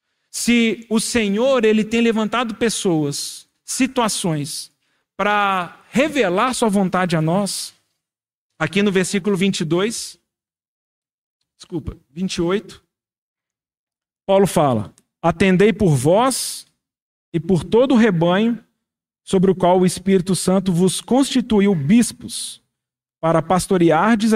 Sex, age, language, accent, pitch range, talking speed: male, 40-59, Portuguese, Brazilian, 165-215 Hz, 100 wpm